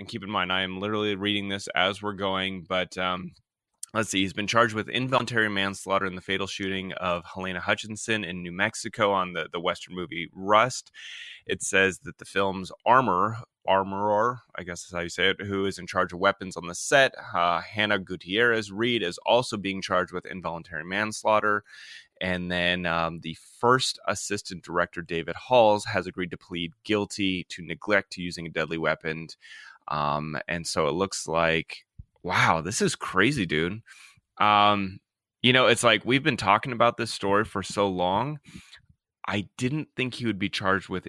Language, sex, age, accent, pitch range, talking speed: English, male, 20-39, American, 90-105 Hz, 180 wpm